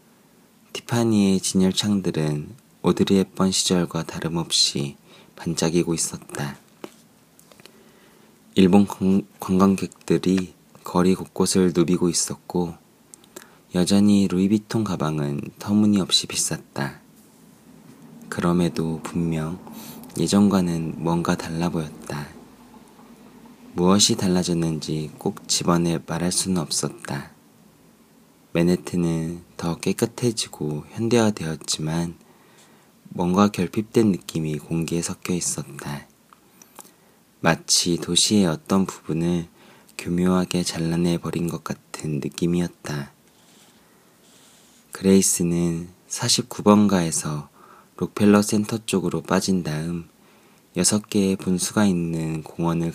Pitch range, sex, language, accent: 80-100 Hz, male, Korean, native